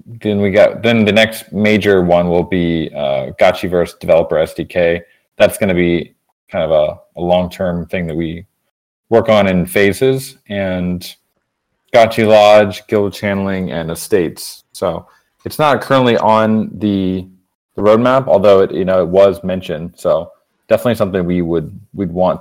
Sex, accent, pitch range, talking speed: male, American, 85-105 Hz, 160 wpm